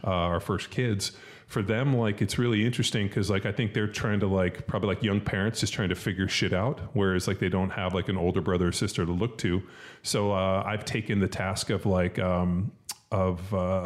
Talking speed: 230 wpm